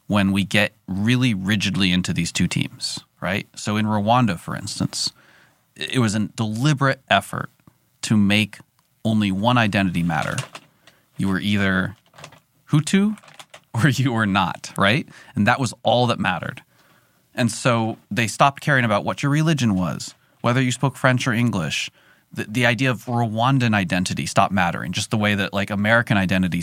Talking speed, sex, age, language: 160 wpm, male, 30-49, English